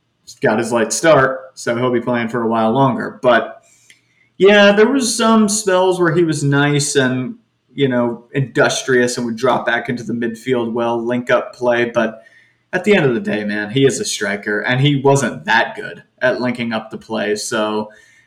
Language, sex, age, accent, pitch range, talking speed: English, male, 30-49, American, 115-145 Hz, 195 wpm